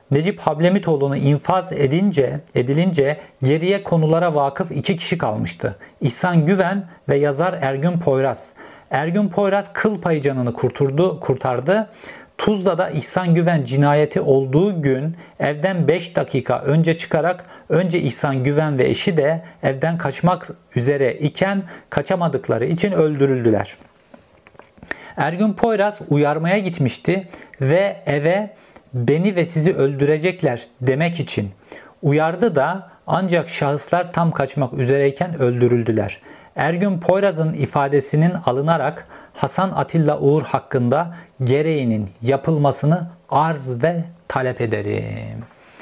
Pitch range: 135-180 Hz